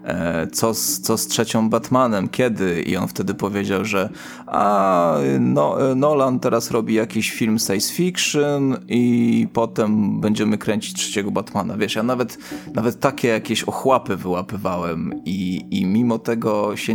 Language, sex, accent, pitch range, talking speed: Polish, male, native, 100-120 Hz, 140 wpm